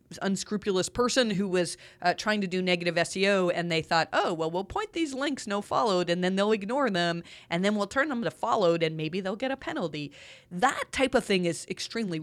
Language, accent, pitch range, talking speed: English, American, 165-220 Hz, 220 wpm